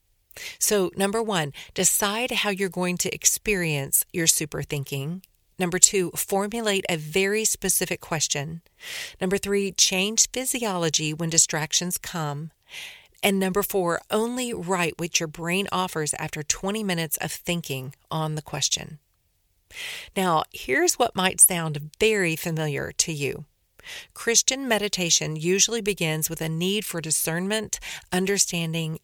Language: English